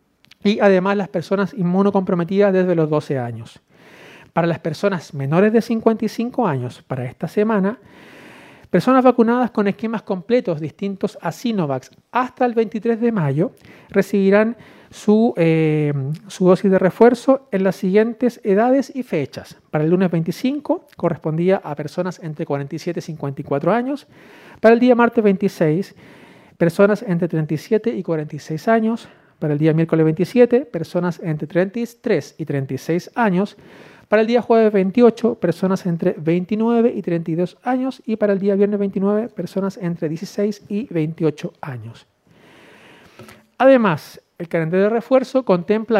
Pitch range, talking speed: 170-225 Hz, 140 wpm